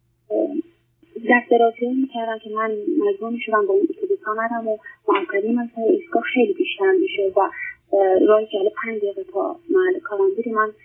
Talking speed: 115 wpm